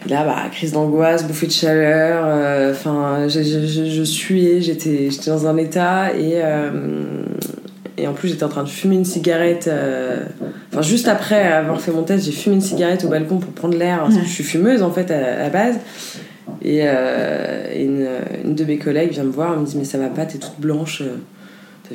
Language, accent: French, French